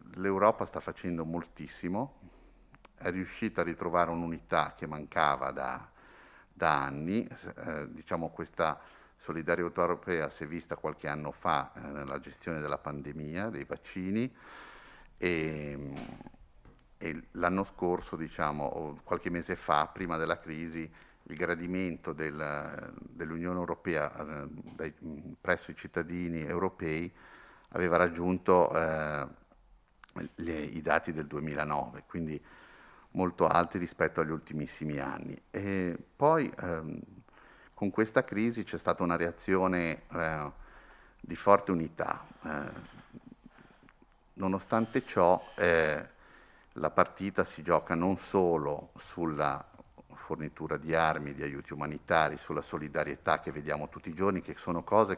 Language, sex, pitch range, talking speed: Italian, male, 75-90 Hz, 120 wpm